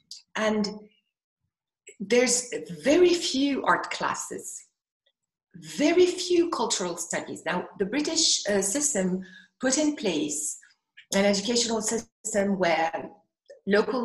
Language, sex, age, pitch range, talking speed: English, female, 50-69, 190-265 Hz, 100 wpm